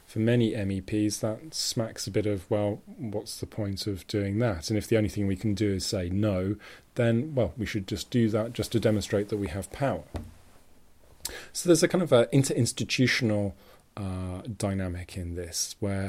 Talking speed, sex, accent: 185 wpm, male, British